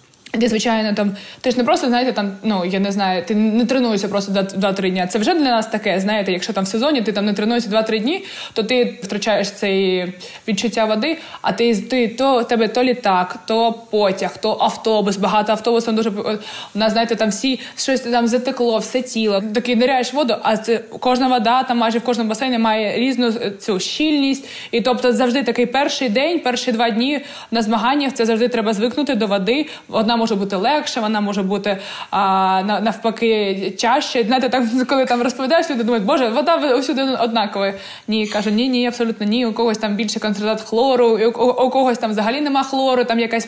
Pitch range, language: 215-250 Hz, Ukrainian